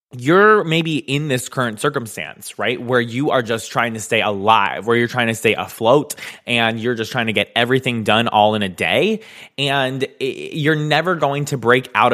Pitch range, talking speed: 115-150 Hz, 200 wpm